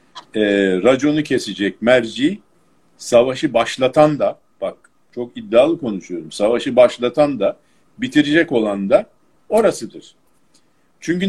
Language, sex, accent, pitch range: Turkish, male, native, 100-145 Hz